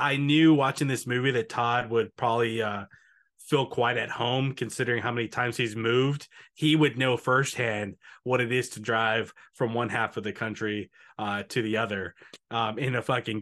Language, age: English, 20-39